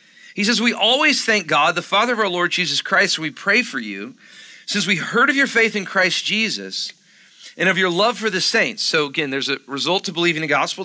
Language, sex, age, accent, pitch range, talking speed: English, male, 40-59, American, 175-255 Hz, 230 wpm